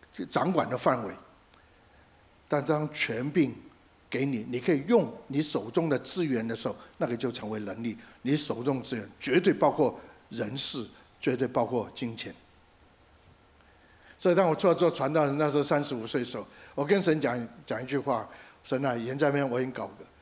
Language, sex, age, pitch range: Chinese, male, 60-79, 110-155 Hz